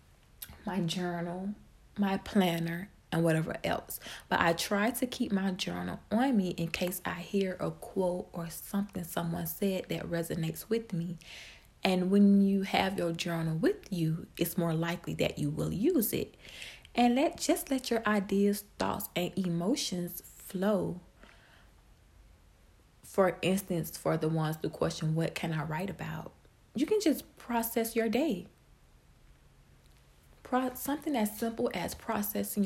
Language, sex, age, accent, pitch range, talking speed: English, female, 30-49, American, 160-200 Hz, 145 wpm